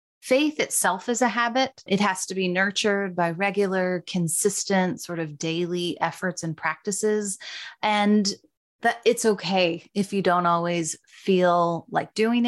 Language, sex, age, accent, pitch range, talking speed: English, female, 30-49, American, 175-220 Hz, 145 wpm